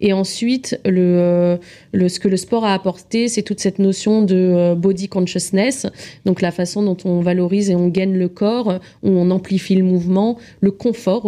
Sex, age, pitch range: female, 30-49, 180-210 Hz